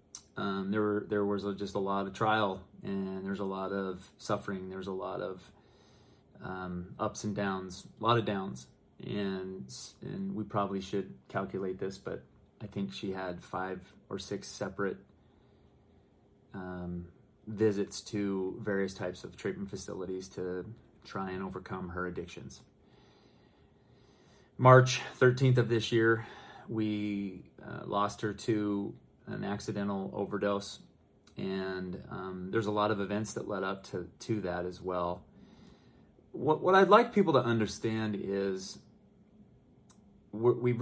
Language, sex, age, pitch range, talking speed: English, male, 30-49, 95-115 Hz, 140 wpm